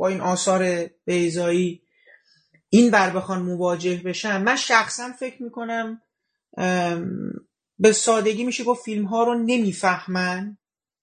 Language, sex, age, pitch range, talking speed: Persian, male, 30-49, 170-220 Hz, 115 wpm